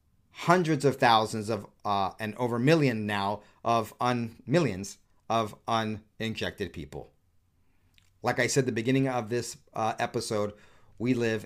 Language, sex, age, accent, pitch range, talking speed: English, male, 40-59, American, 105-130 Hz, 140 wpm